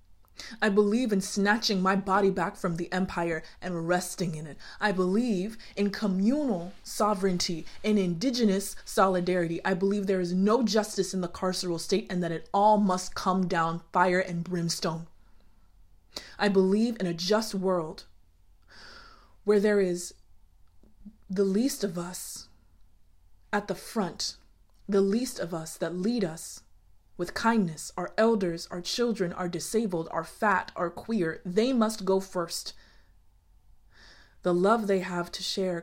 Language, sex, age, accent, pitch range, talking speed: English, female, 20-39, American, 170-205 Hz, 145 wpm